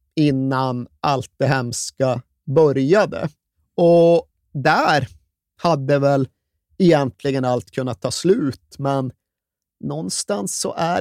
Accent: native